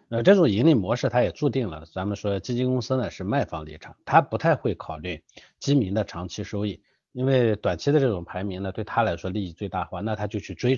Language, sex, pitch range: Chinese, male, 90-125 Hz